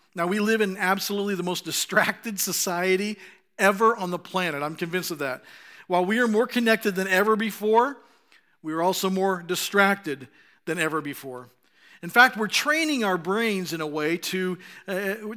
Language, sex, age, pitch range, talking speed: English, male, 50-69, 180-225 Hz, 170 wpm